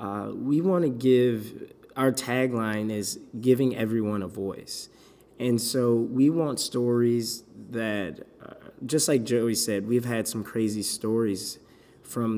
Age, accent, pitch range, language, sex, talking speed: 20-39, American, 105-125 Hz, English, male, 140 wpm